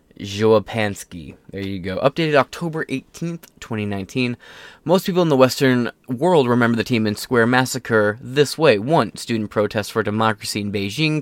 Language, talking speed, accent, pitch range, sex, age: English, 155 wpm, American, 105-145 Hz, male, 20-39